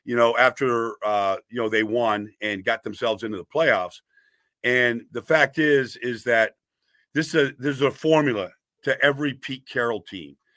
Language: English